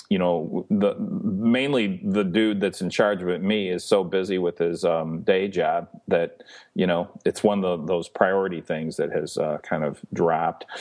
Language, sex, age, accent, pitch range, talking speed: English, male, 40-59, American, 90-110 Hz, 200 wpm